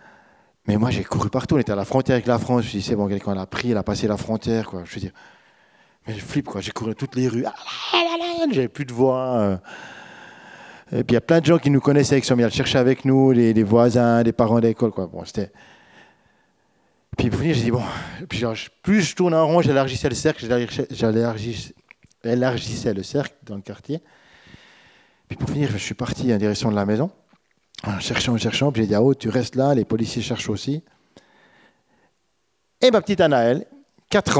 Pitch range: 110-140 Hz